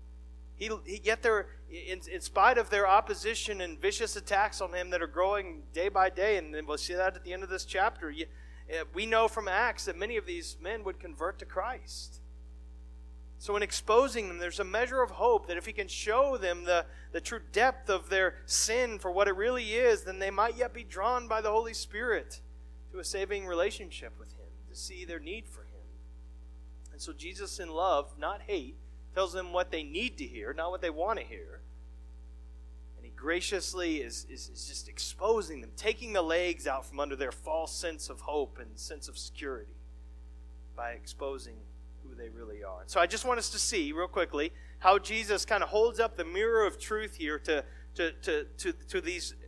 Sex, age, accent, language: male, 40-59, American, English